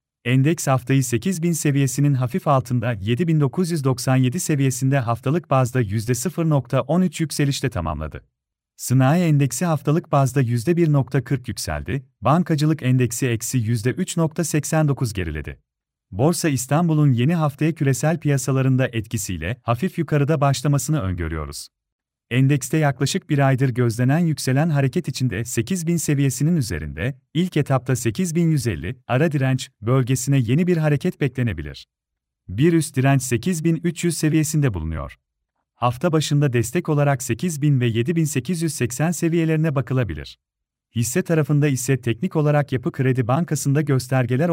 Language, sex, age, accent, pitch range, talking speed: Turkish, male, 40-59, native, 125-160 Hz, 110 wpm